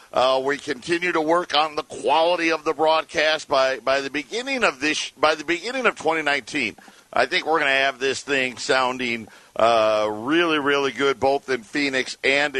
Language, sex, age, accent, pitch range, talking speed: English, male, 50-69, American, 125-150 Hz, 200 wpm